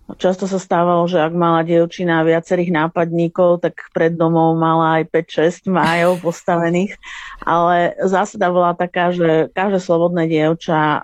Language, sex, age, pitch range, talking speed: Slovak, female, 50-69, 160-175 Hz, 135 wpm